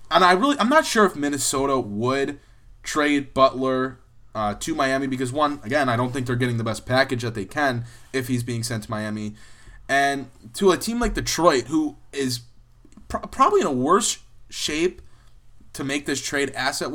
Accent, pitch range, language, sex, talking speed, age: American, 130-155 Hz, English, male, 190 wpm, 20-39